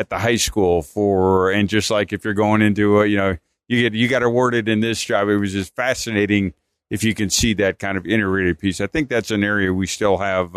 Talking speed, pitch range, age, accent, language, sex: 250 wpm, 100-115 Hz, 50-69, American, English, male